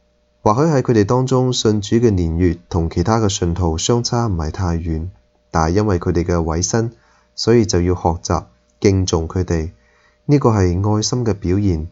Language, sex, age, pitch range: Chinese, male, 20-39, 80-105 Hz